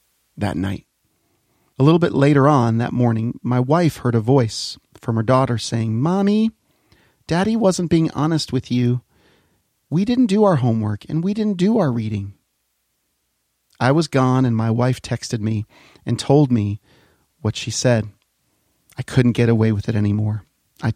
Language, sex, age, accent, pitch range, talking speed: English, male, 40-59, American, 110-140 Hz, 165 wpm